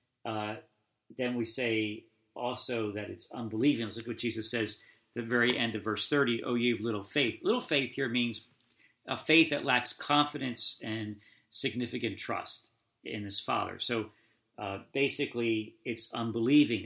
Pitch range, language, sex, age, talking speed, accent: 110-125 Hz, English, male, 50-69, 155 wpm, American